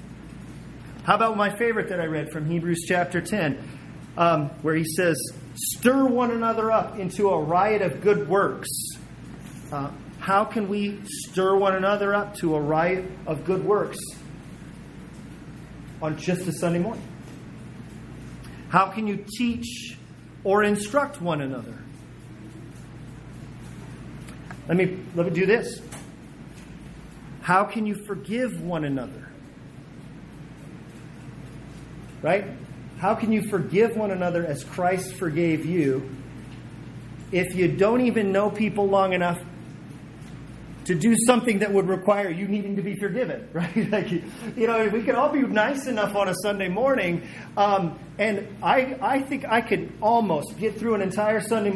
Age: 40-59